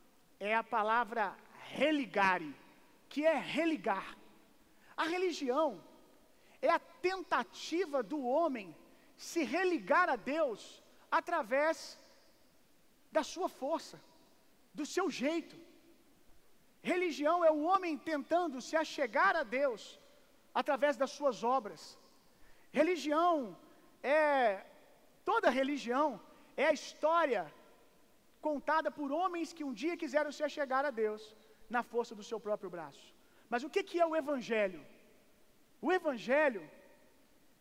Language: Gujarati